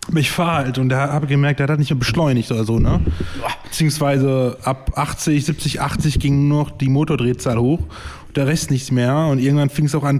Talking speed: 230 wpm